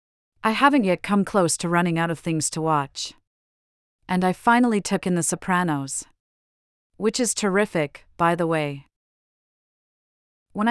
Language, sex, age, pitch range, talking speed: English, female, 40-59, 155-200 Hz, 145 wpm